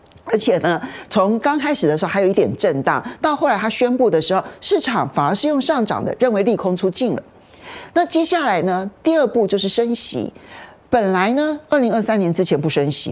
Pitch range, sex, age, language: 165-255 Hz, male, 40-59, Chinese